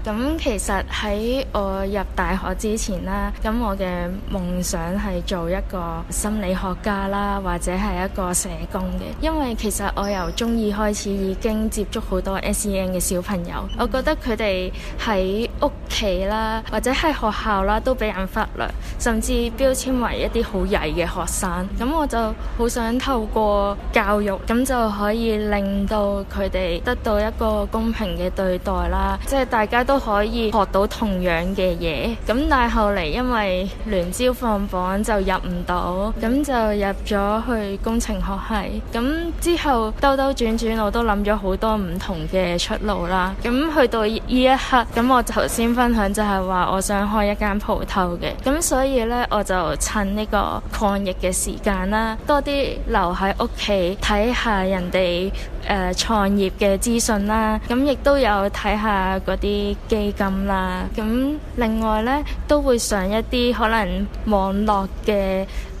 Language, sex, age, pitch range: English, female, 10-29, 195-230 Hz